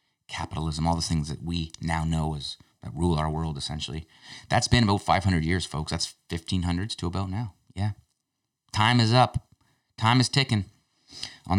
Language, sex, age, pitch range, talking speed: English, male, 30-49, 80-105 Hz, 170 wpm